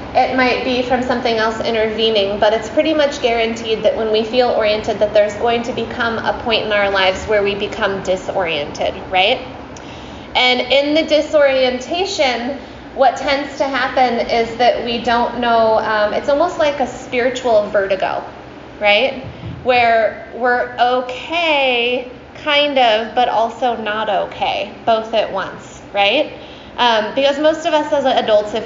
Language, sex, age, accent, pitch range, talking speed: English, female, 20-39, American, 210-265 Hz, 155 wpm